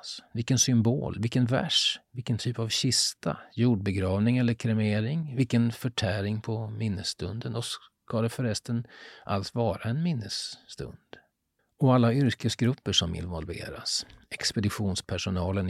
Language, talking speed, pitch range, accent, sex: Swedish, 110 wpm, 100-125 Hz, native, male